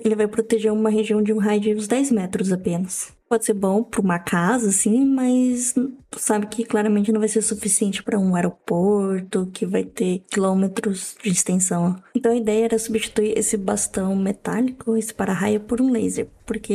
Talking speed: 185 wpm